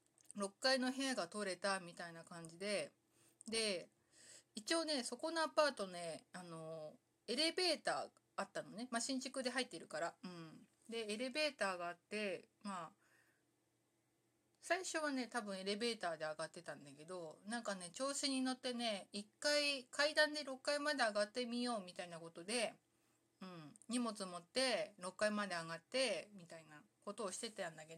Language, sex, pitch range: Japanese, female, 185-260 Hz